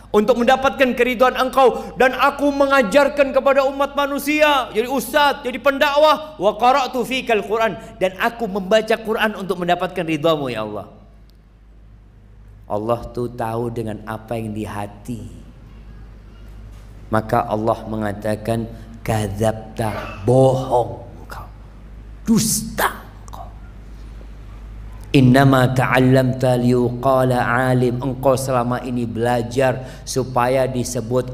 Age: 40-59